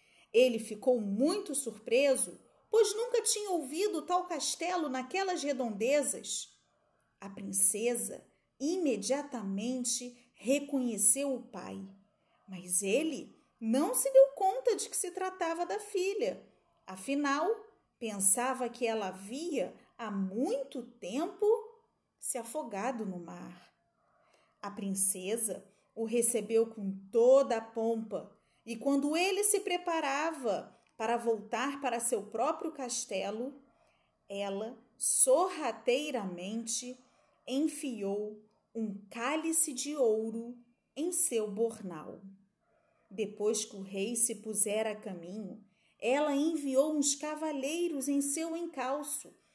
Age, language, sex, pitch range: 40-59, Portuguese, female, 220-310 Hz